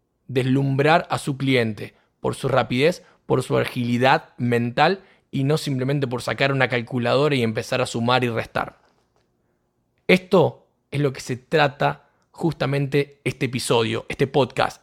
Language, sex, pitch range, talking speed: Spanish, male, 125-165 Hz, 140 wpm